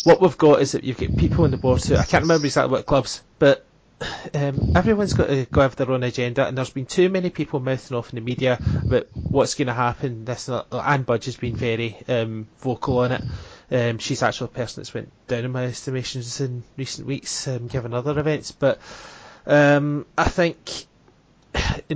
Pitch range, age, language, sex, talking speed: 125-150 Hz, 20-39, English, male, 210 wpm